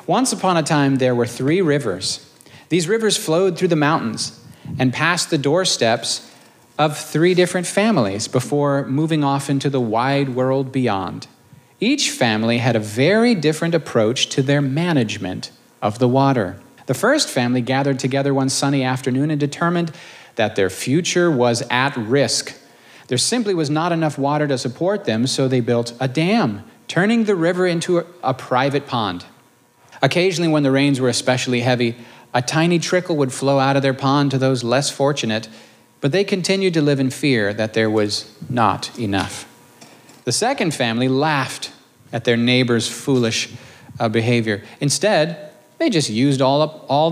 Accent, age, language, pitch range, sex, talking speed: American, 40-59, English, 120-165 Hz, male, 165 wpm